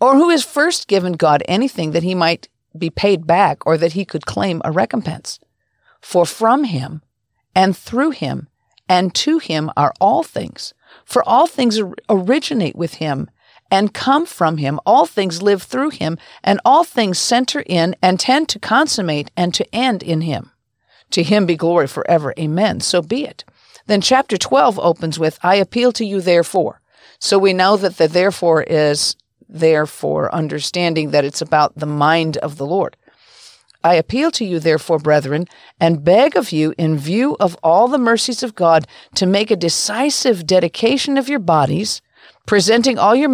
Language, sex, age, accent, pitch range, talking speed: English, female, 50-69, American, 165-230 Hz, 175 wpm